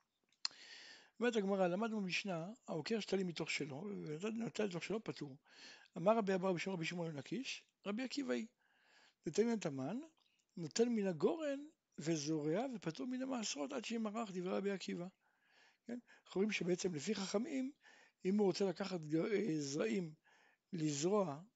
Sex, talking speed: male, 140 wpm